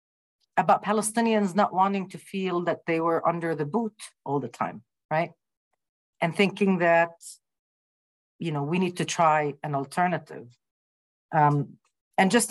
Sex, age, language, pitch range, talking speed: female, 50-69, English, 140-180 Hz, 145 wpm